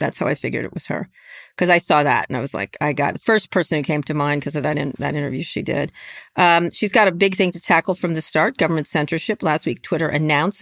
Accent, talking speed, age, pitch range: American, 275 wpm, 40-59, 145-170 Hz